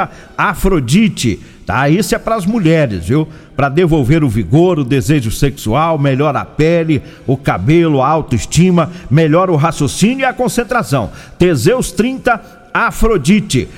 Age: 50-69